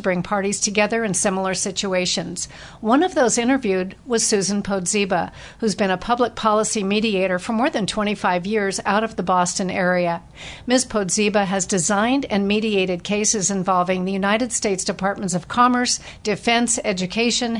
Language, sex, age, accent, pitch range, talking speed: English, female, 50-69, American, 190-225 Hz, 155 wpm